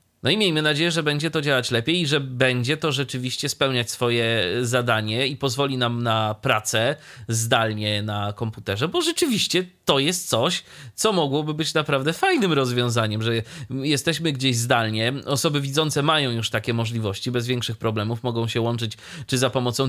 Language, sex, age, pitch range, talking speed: Polish, male, 30-49, 115-145 Hz, 165 wpm